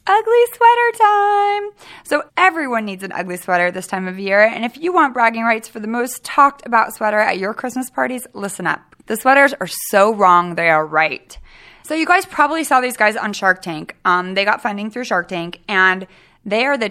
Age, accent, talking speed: 20-39, American, 215 wpm